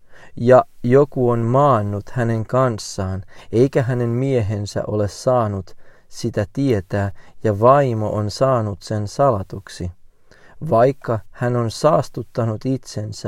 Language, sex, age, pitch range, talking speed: Finnish, male, 40-59, 100-130 Hz, 110 wpm